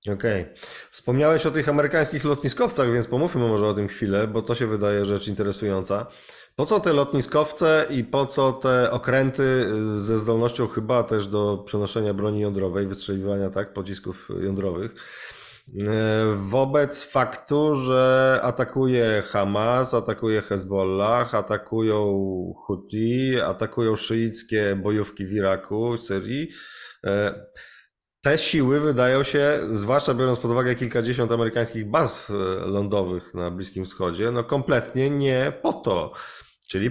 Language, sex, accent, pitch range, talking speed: Polish, male, native, 105-130 Hz, 125 wpm